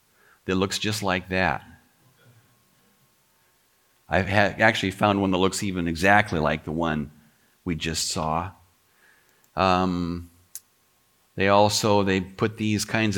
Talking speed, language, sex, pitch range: 125 wpm, English, male, 90-125 Hz